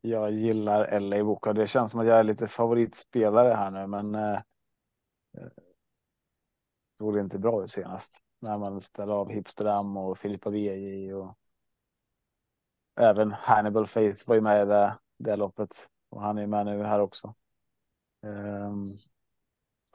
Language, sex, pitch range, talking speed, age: Swedish, male, 105-115 Hz, 150 wpm, 30-49